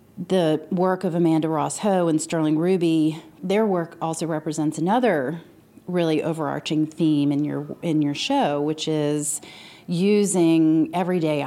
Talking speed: 135 wpm